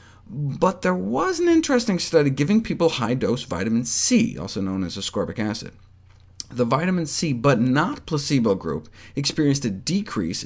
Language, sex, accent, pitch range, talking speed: English, male, American, 100-165 Hz, 150 wpm